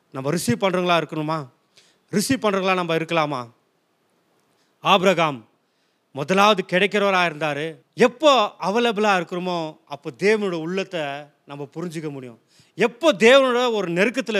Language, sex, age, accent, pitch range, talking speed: Tamil, male, 30-49, native, 160-210 Hz, 105 wpm